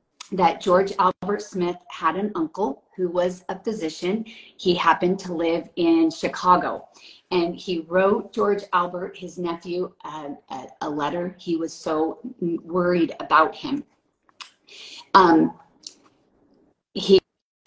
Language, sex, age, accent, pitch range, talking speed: English, female, 40-59, American, 185-235 Hz, 120 wpm